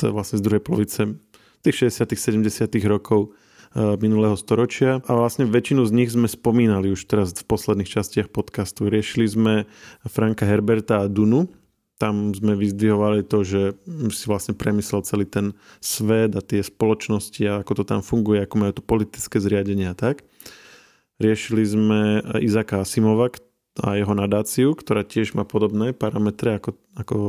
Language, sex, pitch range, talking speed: Slovak, male, 100-110 Hz, 150 wpm